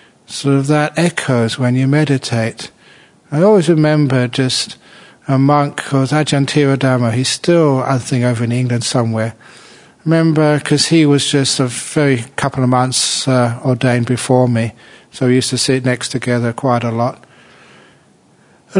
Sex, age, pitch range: male, 60-79, 130-155 Hz